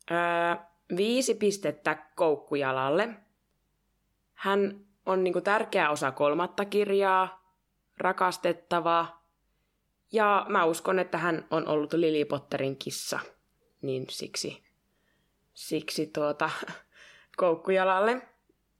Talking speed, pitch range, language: 85 wpm, 150-185 Hz, Finnish